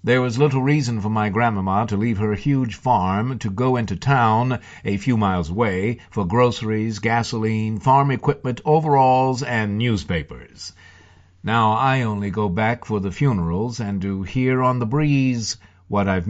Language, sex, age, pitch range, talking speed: English, male, 60-79, 100-130 Hz, 160 wpm